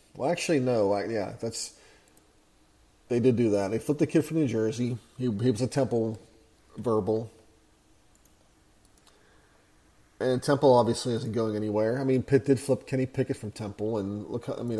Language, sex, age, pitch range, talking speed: English, male, 30-49, 110-140 Hz, 170 wpm